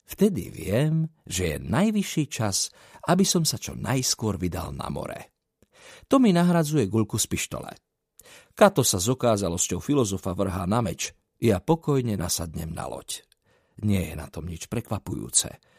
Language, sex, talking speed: Slovak, male, 150 wpm